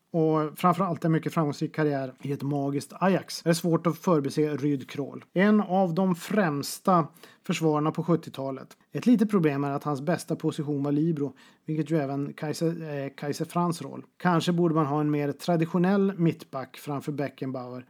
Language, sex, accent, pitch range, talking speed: Swedish, male, native, 140-170 Hz, 170 wpm